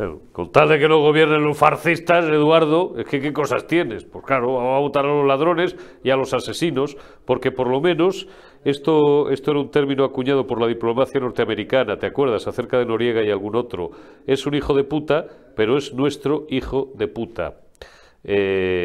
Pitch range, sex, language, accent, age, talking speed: 105-145 Hz, male, Spanish, Spanish, 40-59, 195 wpm